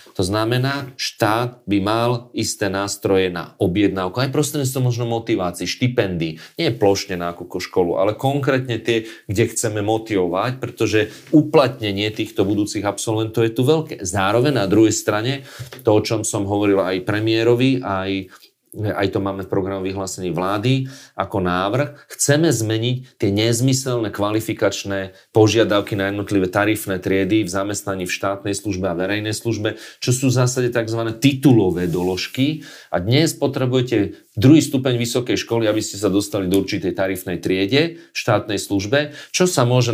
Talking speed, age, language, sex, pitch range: 145 wpm, 30-49, Slovak, male, 100-125 Hz